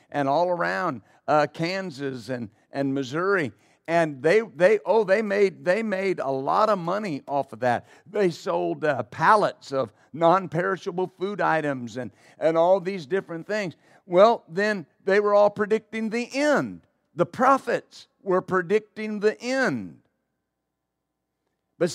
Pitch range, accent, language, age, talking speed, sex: 140-210 Hz, American, English, 50-69, 140 wpm, male